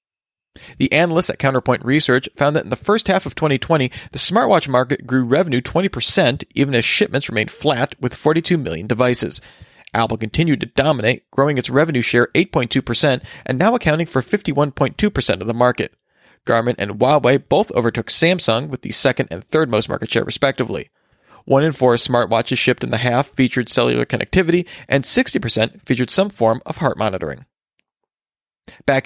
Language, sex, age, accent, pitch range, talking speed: English, male, 40-59, American, 120-155 Hz, 165 wpm